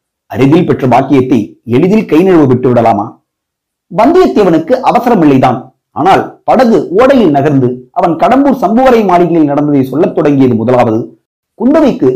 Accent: native